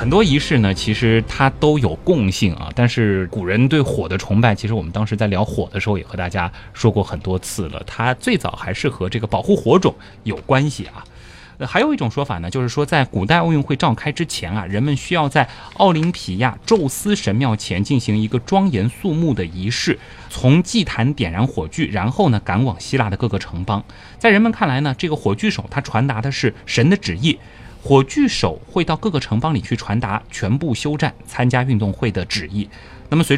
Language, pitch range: Chinese, 100-135 Hz